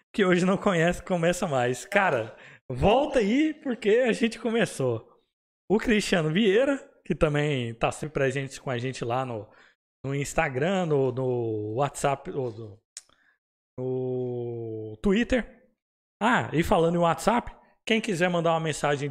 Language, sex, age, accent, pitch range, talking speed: Portuguese, male, 20-39, Brazilian, 140-190 Hz, 140 wpm